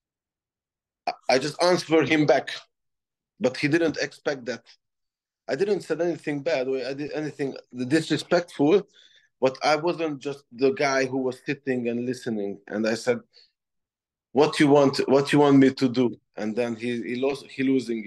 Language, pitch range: English, 115-145 Hz